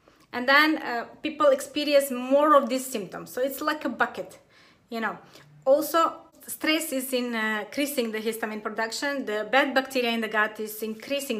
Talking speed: 170 wpm